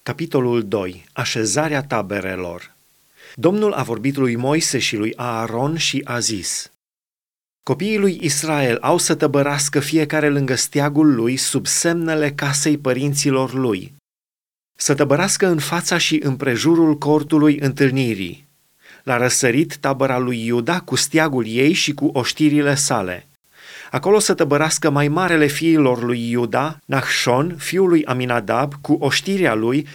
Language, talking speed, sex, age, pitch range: Romanian, 130 wpm, male, 30-49, 130-160 Hz